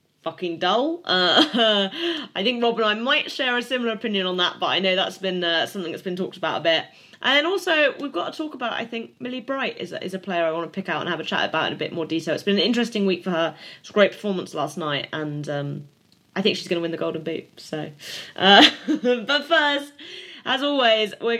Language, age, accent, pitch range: English, 20-39, British, 180-240 Hz